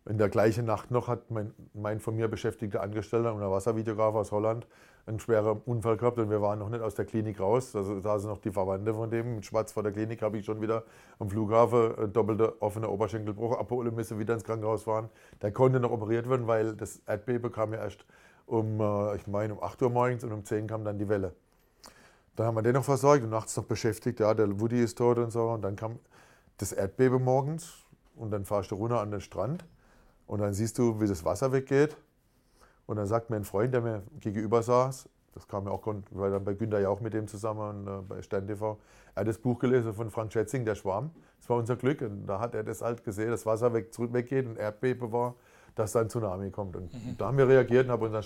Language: German